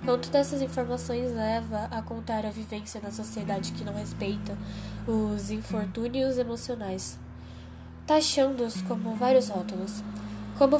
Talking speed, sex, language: 130 wpm, female, Portuguese